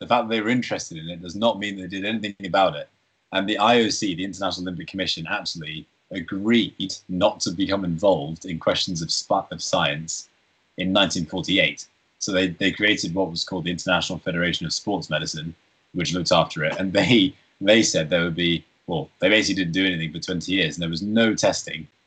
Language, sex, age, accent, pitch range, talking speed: English, male, 20-39, British, 85-100 Hz, 200 wpm